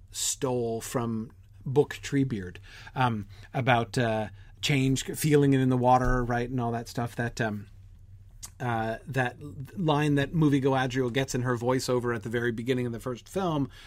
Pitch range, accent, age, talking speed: 100-135 Hz, American, 30-49, 165 wpm